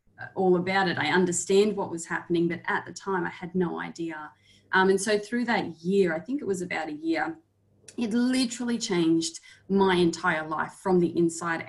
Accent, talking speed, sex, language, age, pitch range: Australian, 195 wpm, female, English, 30-49, 175-210 Hz